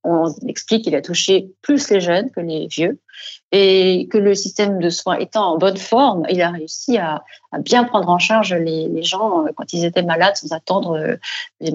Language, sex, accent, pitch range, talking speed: French, female, French, 170-215 Hz, 195 wpm